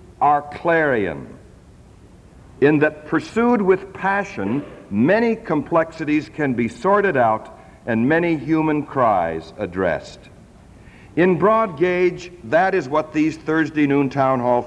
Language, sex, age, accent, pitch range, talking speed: English, male, 60-79, American, 125-180 Hz, 120 wpm